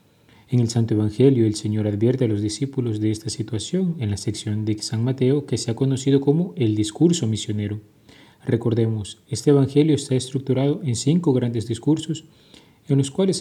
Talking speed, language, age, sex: 175 wpm, Spanish, 30-49, male